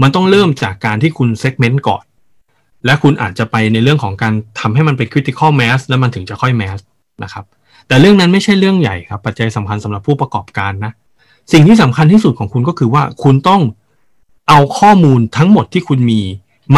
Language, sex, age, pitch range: Thai, male, 20-39, 105-145 Hz